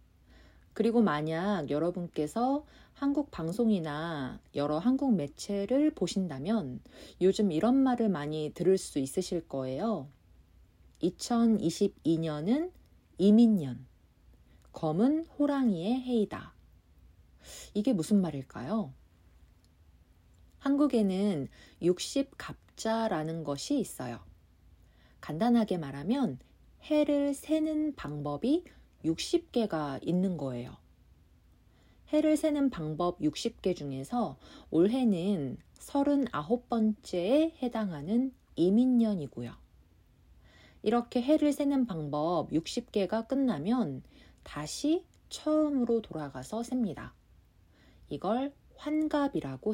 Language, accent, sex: Korean, native, female